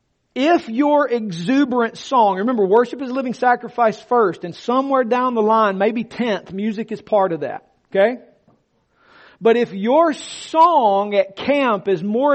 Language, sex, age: English, male, 40-59